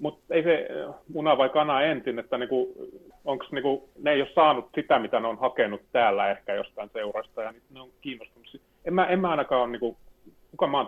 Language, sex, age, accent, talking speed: Finnish, male, 30-49, native, 190 wpm